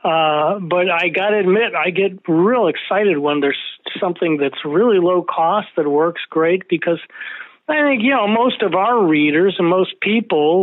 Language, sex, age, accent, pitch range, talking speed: English, male, 40-59, American, 160-220 Hz, 180 wpm